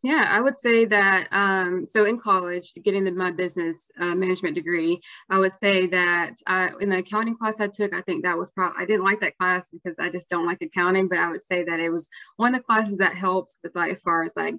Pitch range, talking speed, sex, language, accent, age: 170-205 Hz, 255 wpm, female, English, American, 20-39